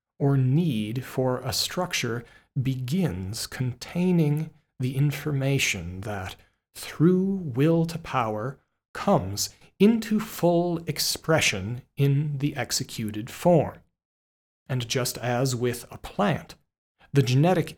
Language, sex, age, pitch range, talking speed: English, male, 40-59, 120-150 Hz, 100 wpm